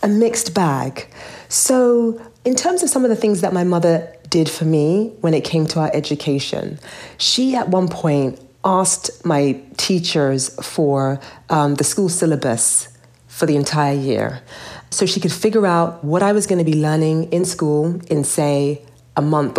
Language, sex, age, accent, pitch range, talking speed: English, female, 40-59, British, 140-180 Hz, 175 wpm